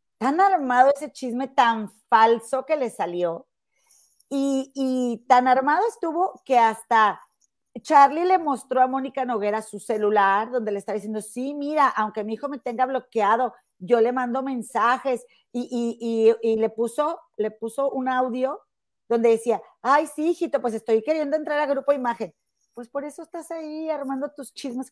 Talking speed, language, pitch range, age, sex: 170 wpm, Spanish, 210-270 Hz, 40-59, female